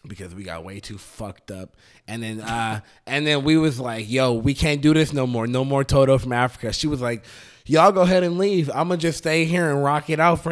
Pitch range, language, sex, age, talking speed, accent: 105-155 Hz, English, male, 20-39, 260 wpm, American